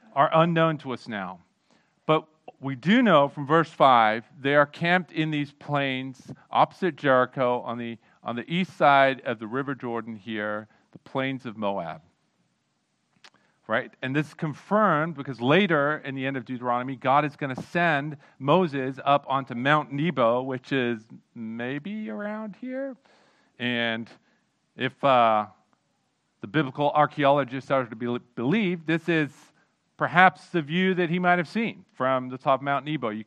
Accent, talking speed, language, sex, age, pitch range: American, 160 wpm, English, male, 40-59, 125-165 Hz